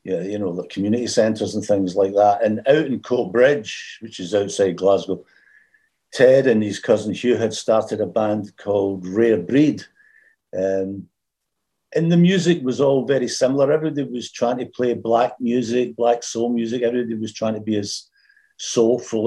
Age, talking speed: 50-69, 175 wpm